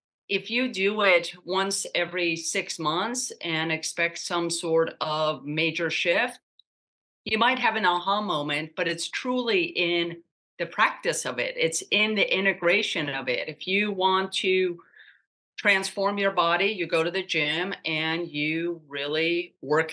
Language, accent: English, American